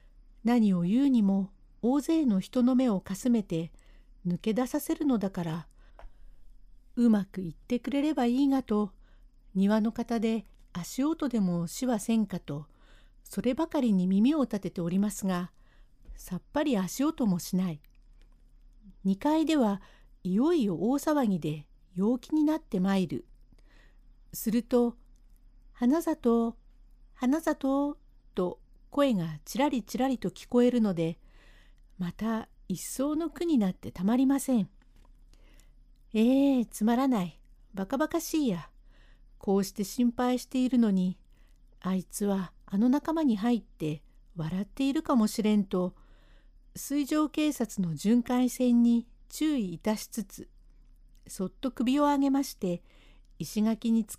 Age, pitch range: 50-69, 185-260 Hz